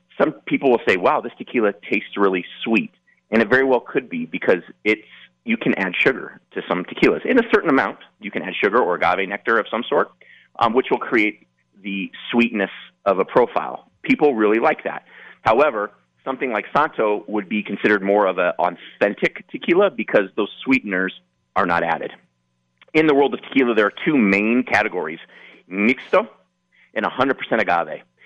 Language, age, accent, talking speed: English, 30-49, American, 180 wpm